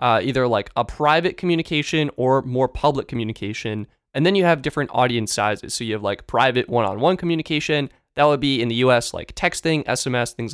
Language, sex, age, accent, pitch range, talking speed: English, male, 20-39, American, 115-150 Hz, 195 wpm